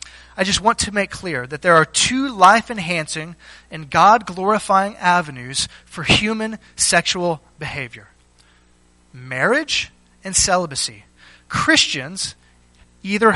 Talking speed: 105 wpm